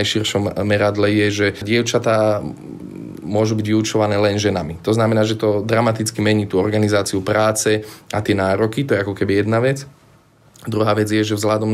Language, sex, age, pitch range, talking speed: Slovak, male, 20-39, 105-110 Hz, 170 wpm